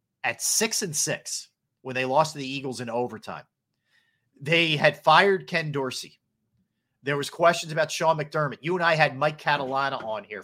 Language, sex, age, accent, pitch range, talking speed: English, male, 40-59, American, 125-170 Hz, 170 wpm